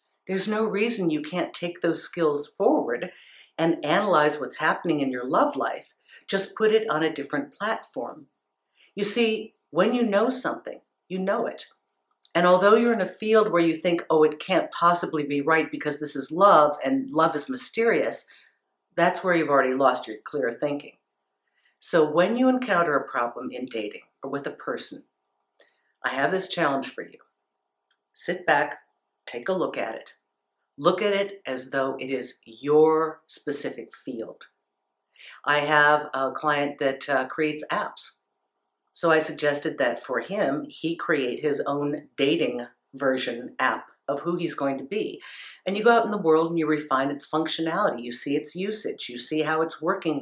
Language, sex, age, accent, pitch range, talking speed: English, female, 50-69, American, 145-195 Hz, 175 wpm